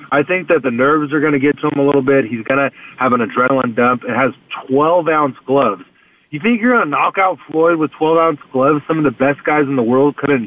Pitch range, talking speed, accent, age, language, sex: 120-150 Hz, 260 wpm, American, 30-49, English, male